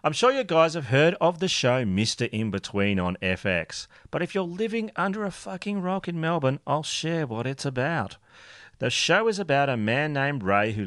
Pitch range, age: 110-155 Hz, 40-59